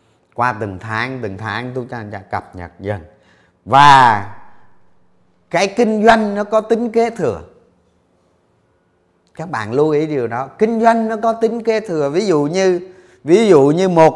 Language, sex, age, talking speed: Vietnamese, male, 30-49, 165 wpm